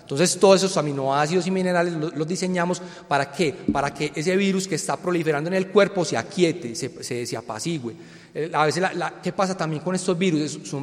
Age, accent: 30-49, Colombian